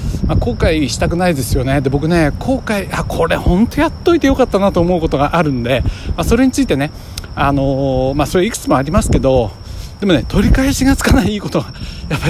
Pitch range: 115-175 Hz